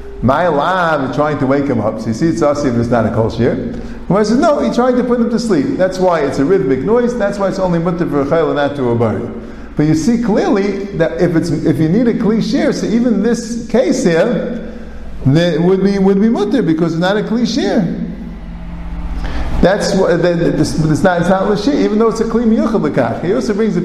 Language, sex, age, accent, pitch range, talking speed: English, male, 50-69, American, 145-210 Hz, 230 wpm